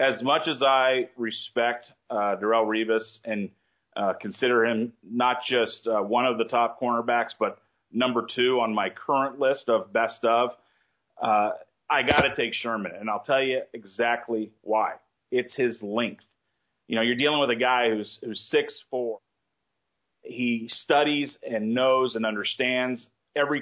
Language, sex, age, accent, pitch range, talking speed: English, male, 40-59, American, 115-135 Hz, 160 wpm